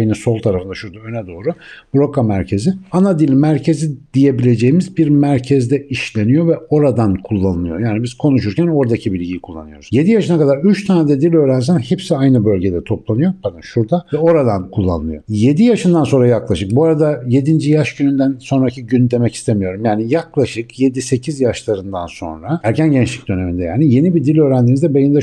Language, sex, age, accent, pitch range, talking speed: Turkish, male, 60-79, native, 110-150 Hz, 160 wpm